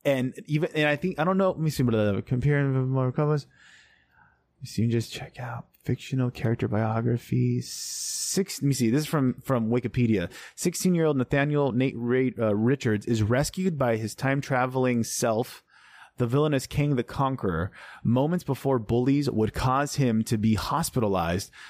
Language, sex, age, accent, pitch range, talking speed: English, male, 20-39, American, 110-145 Hz, 175 wpm